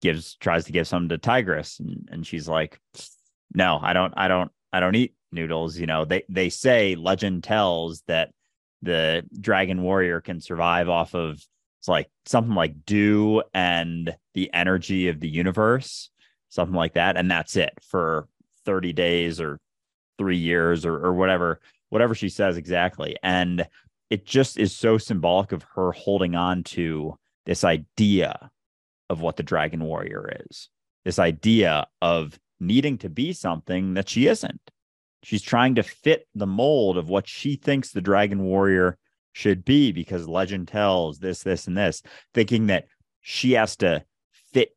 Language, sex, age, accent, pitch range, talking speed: English, male, 30-49, American, 85-100 Hz, 165 wpm